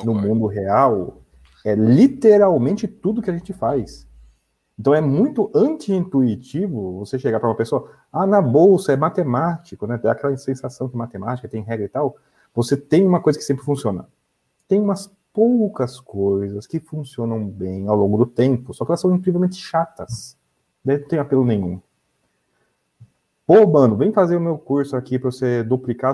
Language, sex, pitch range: Portuguese, male, 110-140 Hz